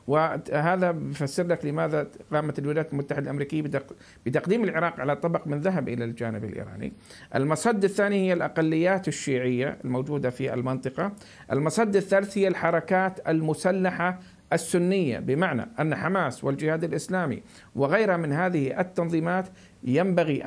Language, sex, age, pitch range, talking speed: Arabic, male, 50-69, 140-185 Hz, 125 wpm